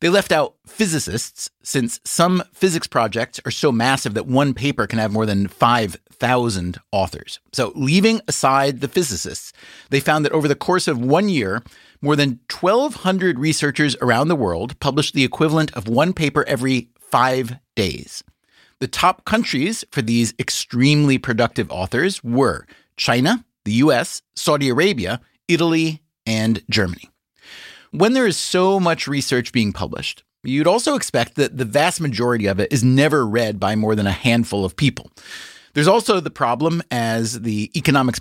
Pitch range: 115-155 Hz